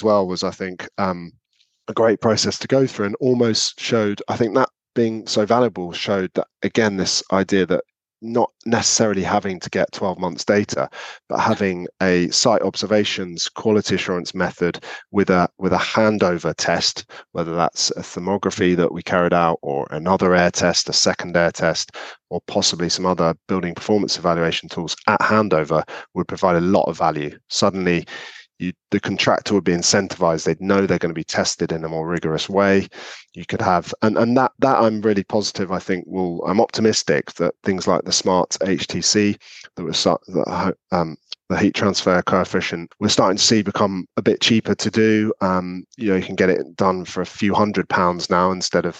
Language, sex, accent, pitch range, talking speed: English, male, British, 90-105 Hz, 185 wpm